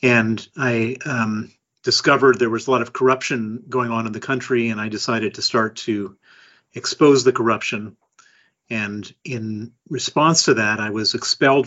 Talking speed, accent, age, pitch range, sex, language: 165 wpm, American, 40-59, 110-125 Hz, male, English